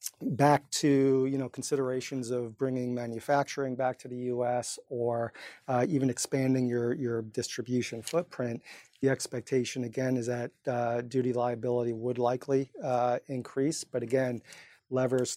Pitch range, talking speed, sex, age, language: 120-130 Hz, 135 wpm, male, 40-59, English